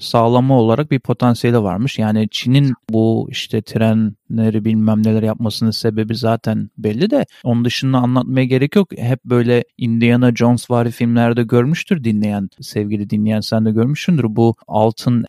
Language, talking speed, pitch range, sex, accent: Turkish, 145 wpm, 115-145 Hz, male, native